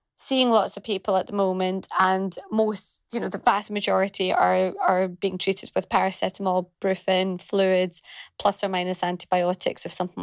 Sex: female